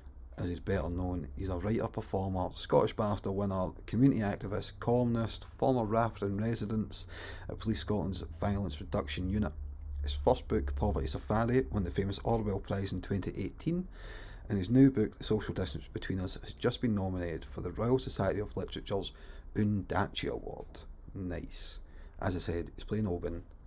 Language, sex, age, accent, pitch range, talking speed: English, male, 30-49, British, 80-105 Hz, 155 wpm